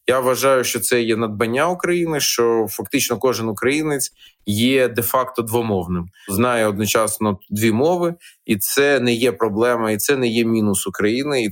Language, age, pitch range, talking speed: Ukrainian, 20-39, 115-145 Hz, 155 wpm